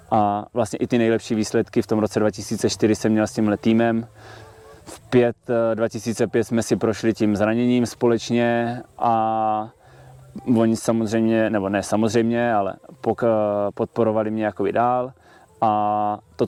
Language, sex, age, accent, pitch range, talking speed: Czech, male, 20-39, native, 105-115 Hz, 135 wpm